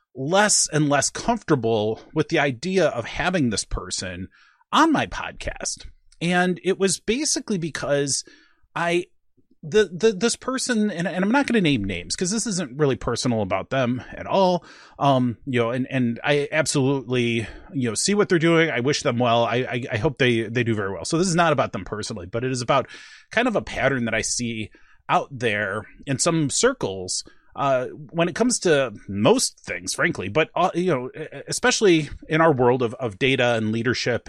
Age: 30-49